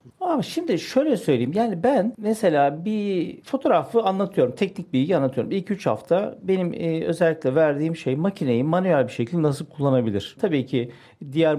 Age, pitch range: 50-69, 135-195 Hz